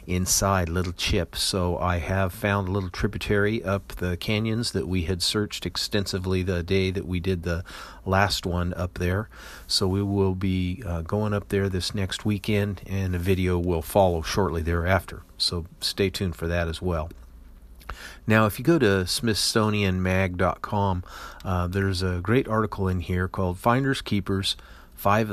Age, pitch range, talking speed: 40-59, 90-100 Hz, 165 wpm